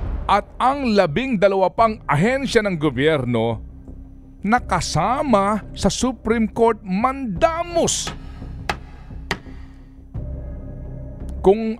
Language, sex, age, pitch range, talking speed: Filipino, male, 50-69, 140-205 Hz, 70 wpm